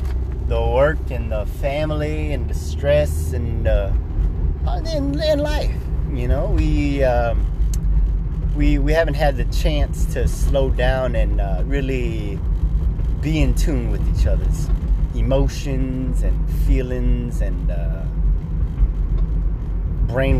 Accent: American